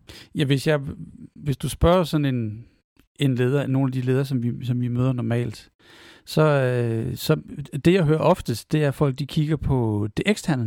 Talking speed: 200 wpm